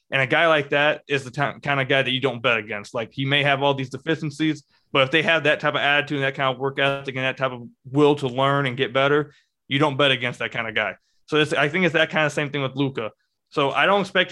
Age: 20-39